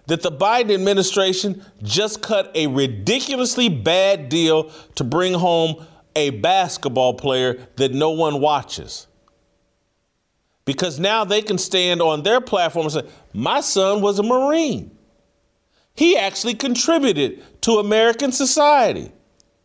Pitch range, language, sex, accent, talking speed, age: 125-195 Hz, English, male, American, 125 wpm, 40-59